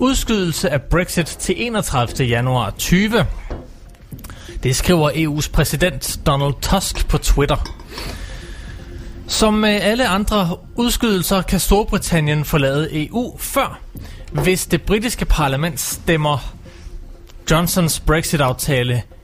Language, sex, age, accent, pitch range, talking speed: Danish, male, 30-49, native, 125-175 Hz, 100 wpm